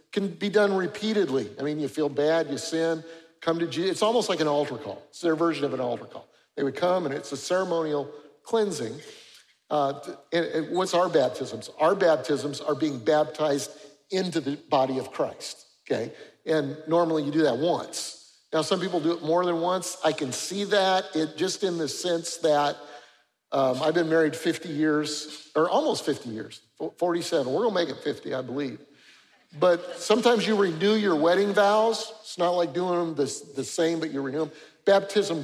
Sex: male